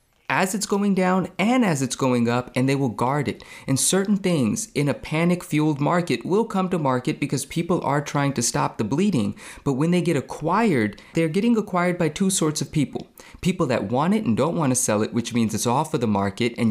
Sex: male